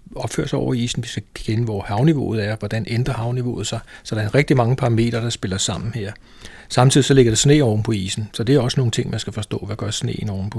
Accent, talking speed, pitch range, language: native, 255 wpm, 105-125 Hz, Danish